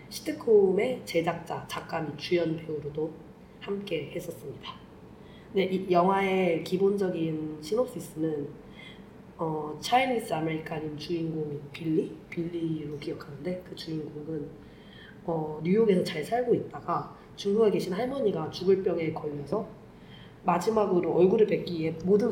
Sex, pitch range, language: female, 160-195 Hz, Korean